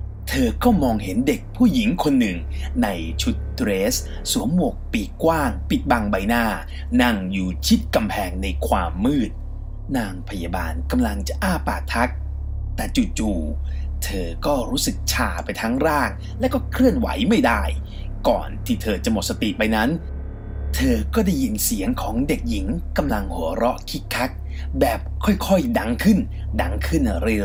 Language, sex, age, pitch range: English, male, 30-49, 70-100 Hz